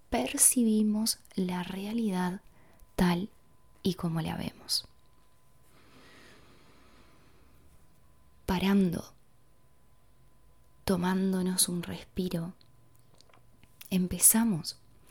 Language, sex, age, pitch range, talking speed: Spanish, female, 20-39, 175-215 Hz, 50 wpm